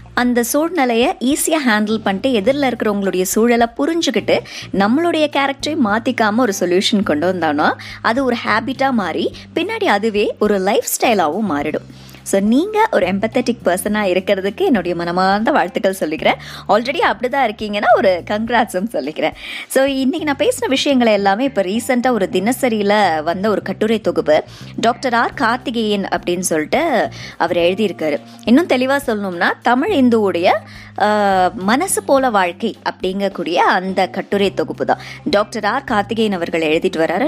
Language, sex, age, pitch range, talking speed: Tamil, male, 20-39, 185-255 Hz, 90 wpm